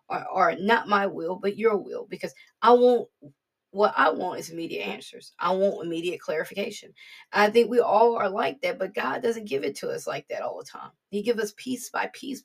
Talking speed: 215 wpm